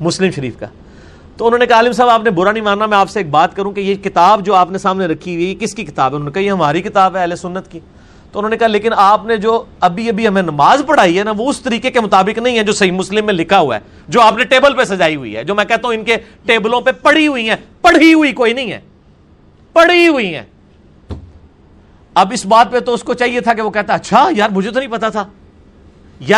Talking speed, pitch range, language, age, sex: 270 wpm, 180-245 Hz, Urdu, 40-59, male